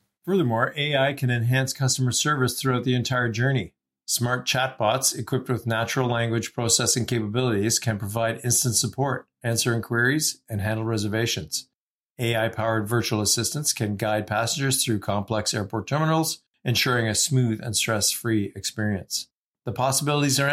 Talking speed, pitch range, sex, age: 135 wpm, 110-130 Hz, male, 50-69